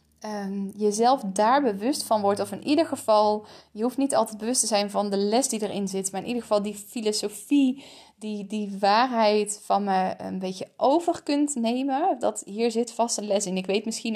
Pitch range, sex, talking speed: 195-235 Hz, female, 205 wpm